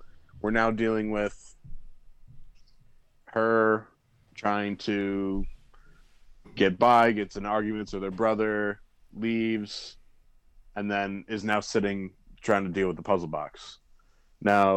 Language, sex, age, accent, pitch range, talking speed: English, male, 20-39, American, 100-115 Hz, 120 wpm